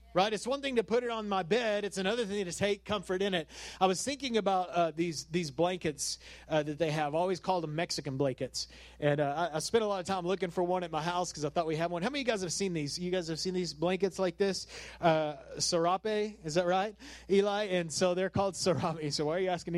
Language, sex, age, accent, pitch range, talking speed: English, male, 30-49, American, 175-220 Hz, 265 wpm